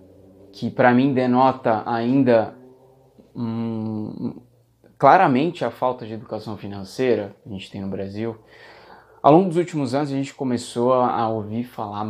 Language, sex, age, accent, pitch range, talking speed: Portuguese, male, 20-39, Brazilian, 105-125 Hz, 145 wpm